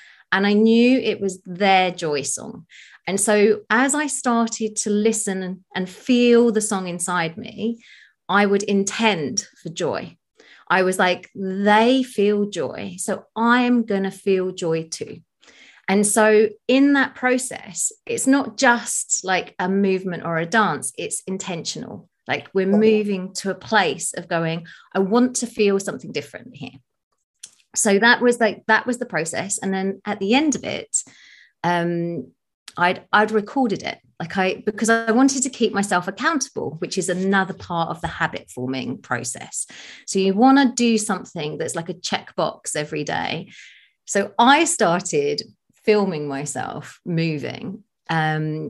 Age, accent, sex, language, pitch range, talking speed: 30-49, British, female, English, 180-225 Hz, 155 wpm